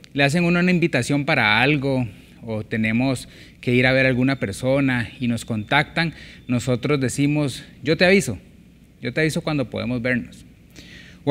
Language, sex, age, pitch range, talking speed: Spanish, male, 30-49, 110-145 Hz, 160 wpm